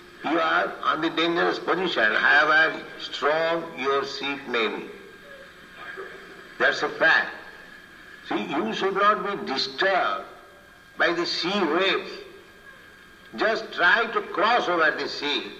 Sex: male